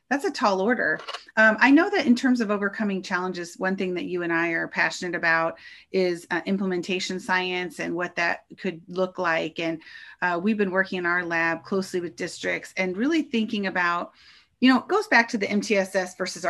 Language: English